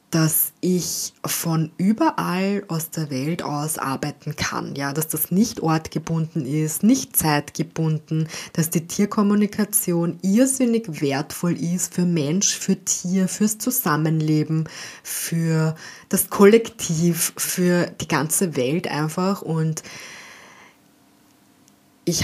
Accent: German